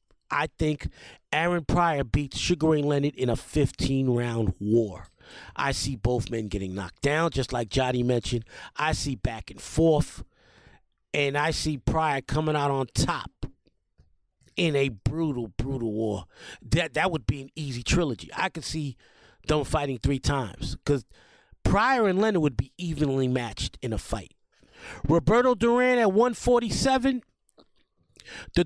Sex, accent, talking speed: male, American, 150 wpm